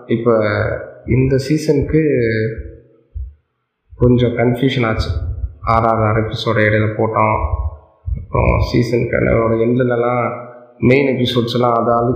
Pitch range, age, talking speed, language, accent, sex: 105-125 Hz, 20-39, 90 wpm, Tamil, native, male